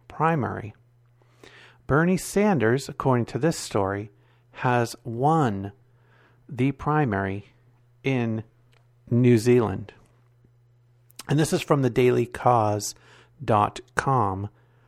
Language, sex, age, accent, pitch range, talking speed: English, male, 50-69, American, 120-155 Hz, 80 wpm